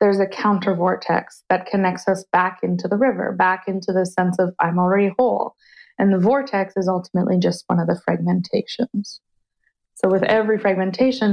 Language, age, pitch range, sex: English, 20-39, 180-200 Hz, female